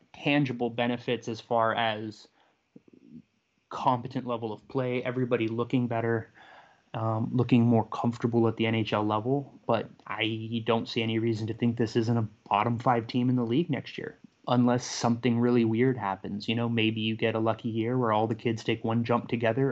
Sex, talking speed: male, 185 wpm